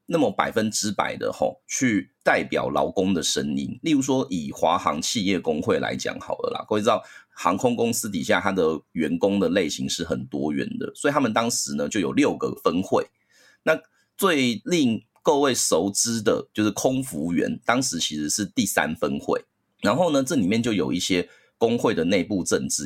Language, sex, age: Chinese, male, 30-49